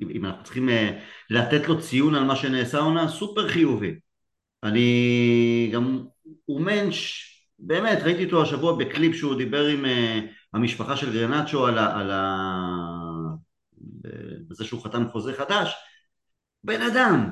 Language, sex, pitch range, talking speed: Hebrew, male, 120-185 Hz, 130 wpm